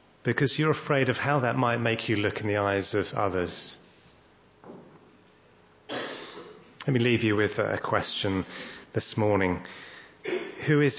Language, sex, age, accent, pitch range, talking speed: English, male, 30-49, British, 100-130 Hz, 140 wpm